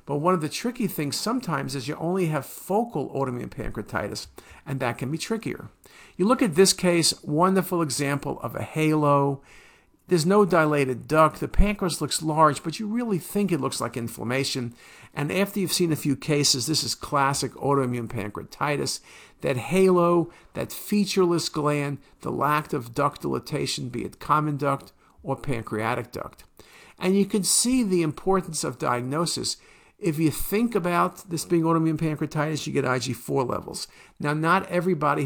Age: 50-69